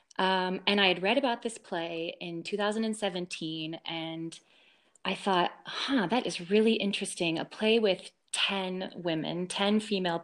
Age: 20-39